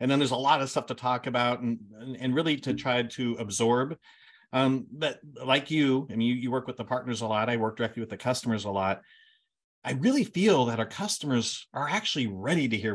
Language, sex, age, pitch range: English, male, 40-59, 115-160 Hz